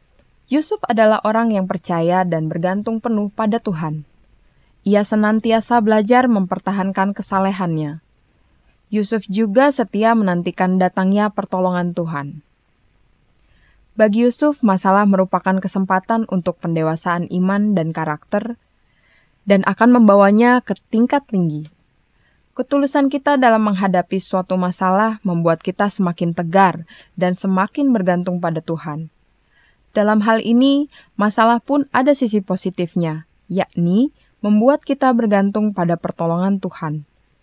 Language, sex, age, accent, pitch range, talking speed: Indonesian, female, 20-39, native, 180-225 Hz, 110 wpm